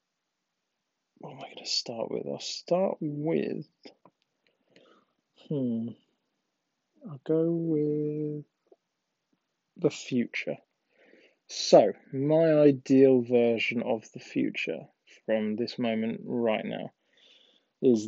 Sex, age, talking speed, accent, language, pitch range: male, 20-39, 95 wpm, British, Swedish, 115-150 Hz